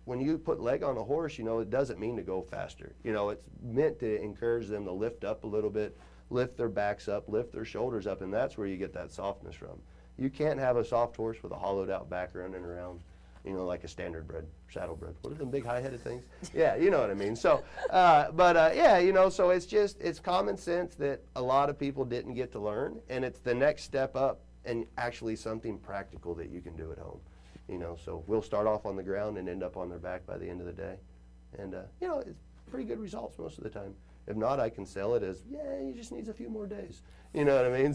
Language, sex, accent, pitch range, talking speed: English, male, American, 90-135 Hz, 265 wpm